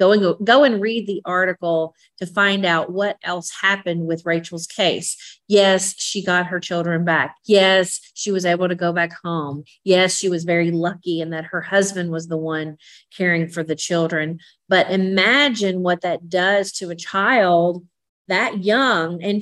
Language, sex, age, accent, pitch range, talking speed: English, female, 40-59, American, 165-190 Hz, 175 wpm